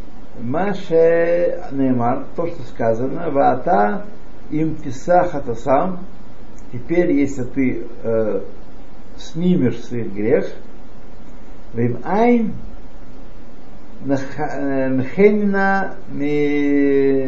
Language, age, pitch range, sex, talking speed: Russian, 60-79, 125-180 Hz, male, 50 wpm